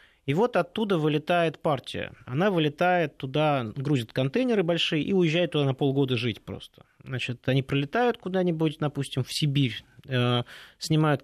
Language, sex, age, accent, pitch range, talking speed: Russian, male, 20-39, native, 125-170 Hz, 140 wpm